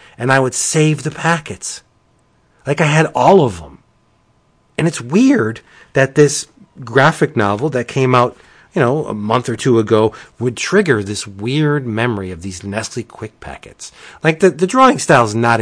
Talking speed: 175 wpm